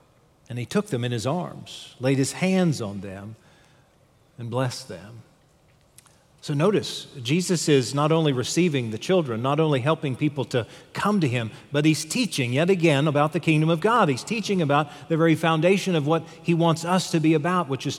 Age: 40-59